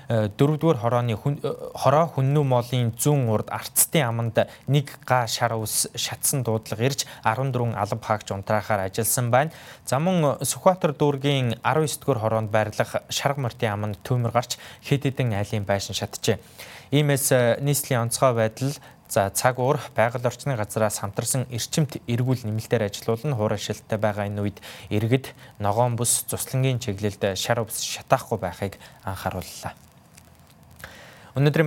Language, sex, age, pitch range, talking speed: English, male, 20-39, 110-135 Hz, 100 wpm